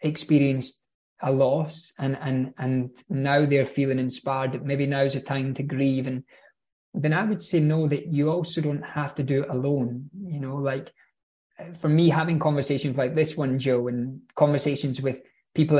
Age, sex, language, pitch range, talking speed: 20-39, male, English, 130-155 Hz, 175 wpm